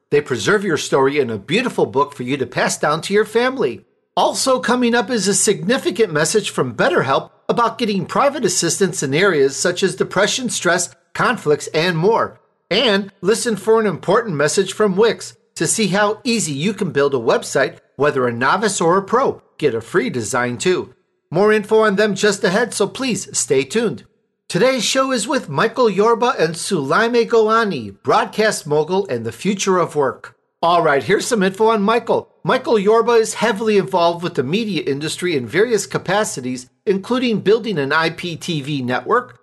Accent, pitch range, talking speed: American, 165-225 Hz, 175 wpm